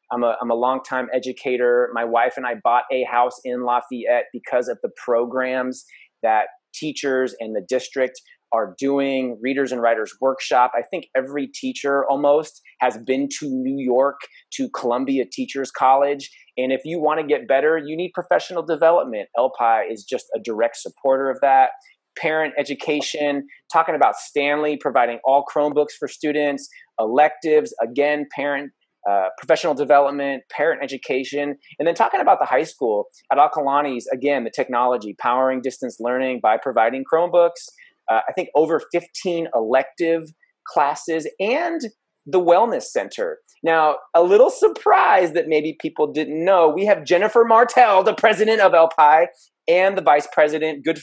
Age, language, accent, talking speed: 30-49, English, American, 155 wpm